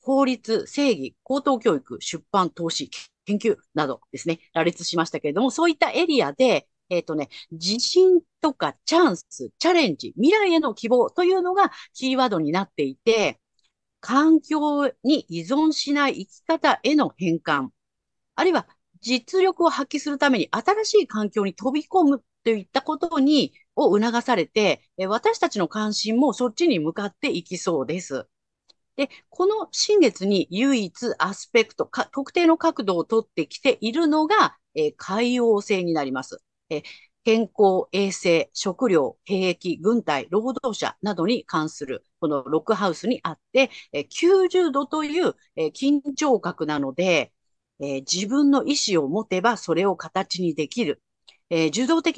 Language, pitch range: Japanese, 185-300 Hz